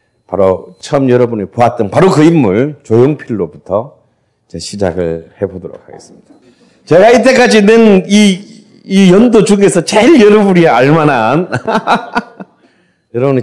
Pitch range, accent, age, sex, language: 115-180 Hz, native, 40-59, male, Korean